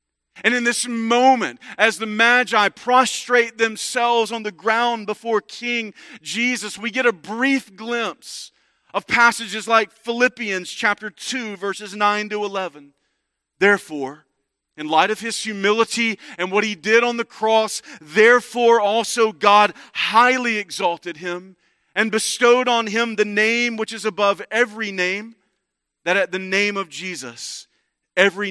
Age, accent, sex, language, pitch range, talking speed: 40-59, American, male, English, 185-230 Hz, 140 wpm